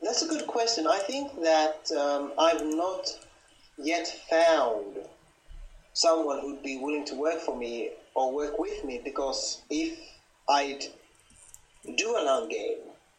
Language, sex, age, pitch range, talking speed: English, male, 30-49, 130-165 Hz, 140 wpm